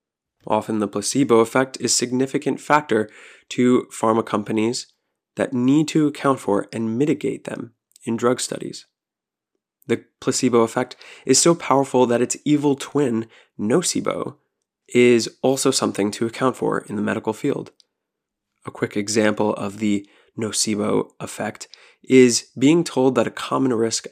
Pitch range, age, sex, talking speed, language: 110-130 Hz, 20-39, male, 140 wpm, English